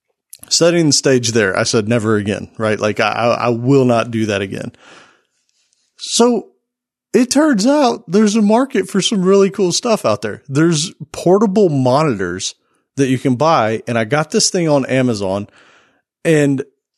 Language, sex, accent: English, male, American